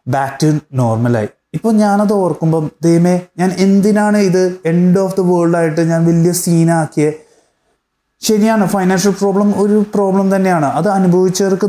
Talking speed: 140 wpm